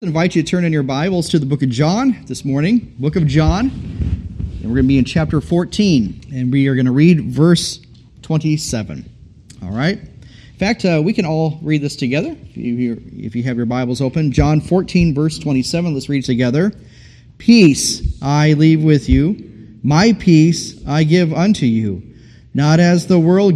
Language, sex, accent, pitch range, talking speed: English, male, American, 125-165 Hz, 190 wpm